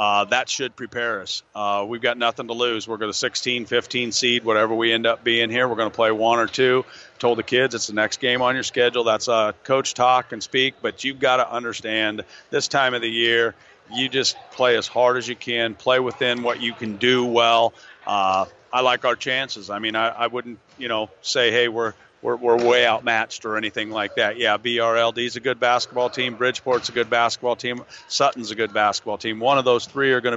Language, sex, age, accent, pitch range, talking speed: English, male, 40-59, American, 110-125 Hz, 230 wpm